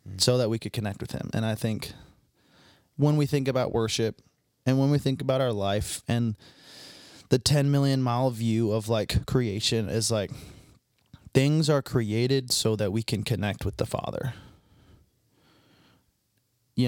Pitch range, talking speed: 110-130 Hz, 160 wpm